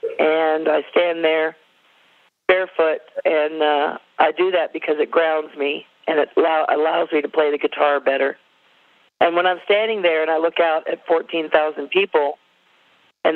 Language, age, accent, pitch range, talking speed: English, 50-69, American, 150-170 Hz, 160 wpm